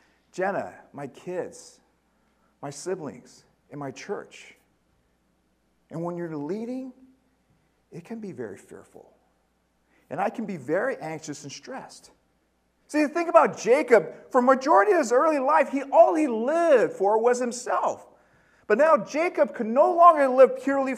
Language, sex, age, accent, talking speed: English, male, 50-69, American, 150 wpm